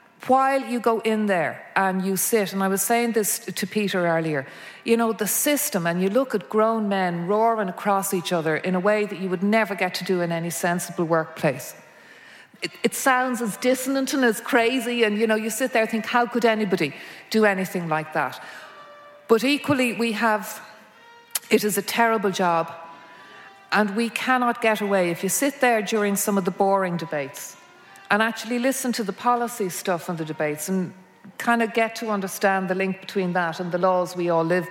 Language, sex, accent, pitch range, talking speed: English, female, Irish, 180-230 Hz, 200 wpm